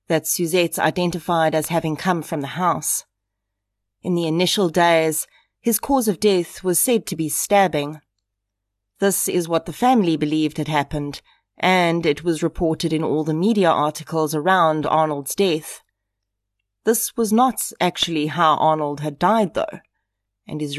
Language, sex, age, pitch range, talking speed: English, female, 30-49, 140-180 Hz, 155 wpm